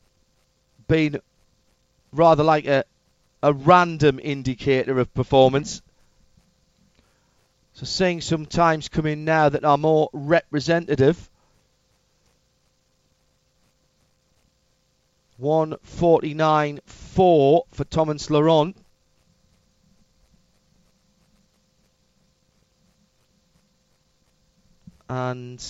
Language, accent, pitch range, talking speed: English, British, 140-170 Hz, 60 wpm